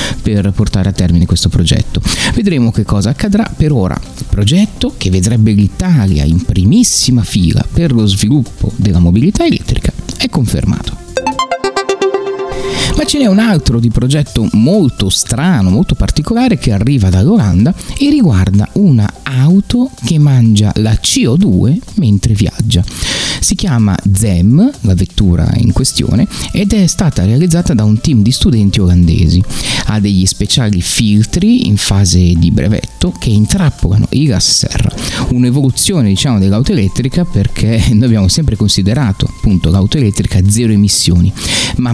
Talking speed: 140 wpm